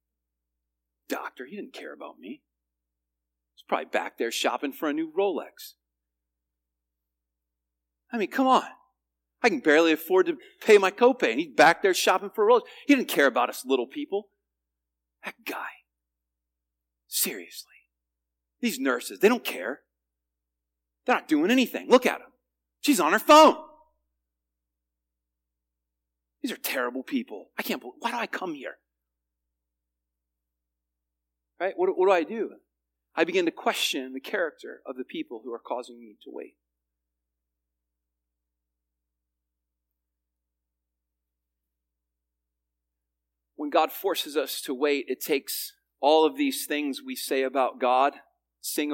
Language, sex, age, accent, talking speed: English, male, 40-59, American, 135 wpm